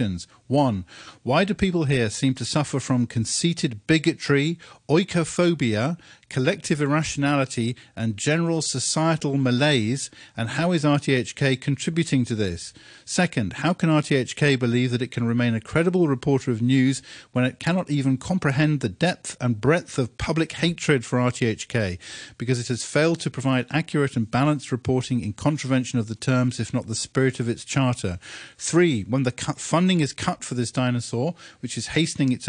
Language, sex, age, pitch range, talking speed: English, male, 50-69, 120-150 Hz, 165 wpm